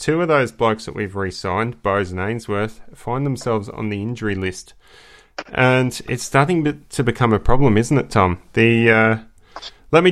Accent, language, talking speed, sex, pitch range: Australian, English, 180 wpm, male, 100-125 Hz